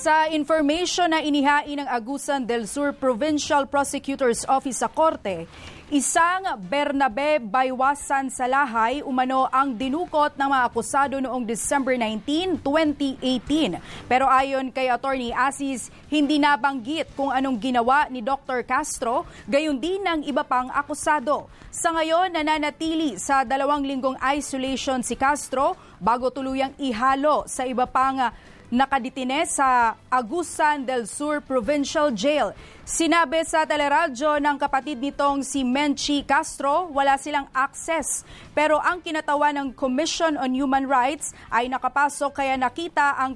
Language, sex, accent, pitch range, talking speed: English, female, Filipino, 260-300 Hz, 130 wpm